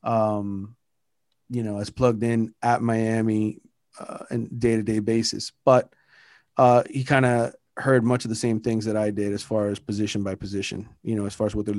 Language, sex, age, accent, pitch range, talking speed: English, male, 30-49, American, 110-125 Hz, 200 wpm